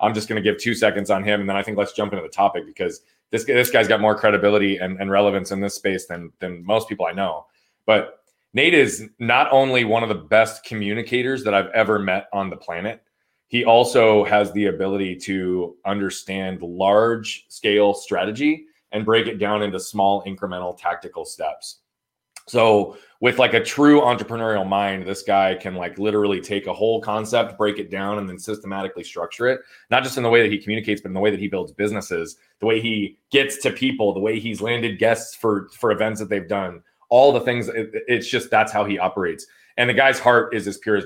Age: 30-49